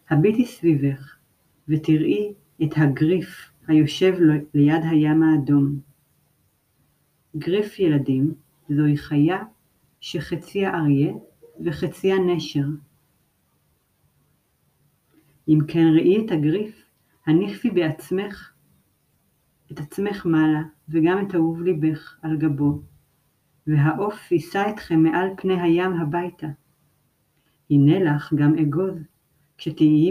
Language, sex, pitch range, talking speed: Hebrew, female, 150-185 Hz, 90 wpm